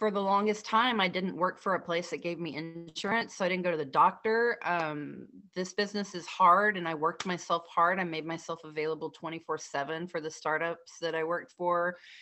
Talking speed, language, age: 210 wpm, English, 30-49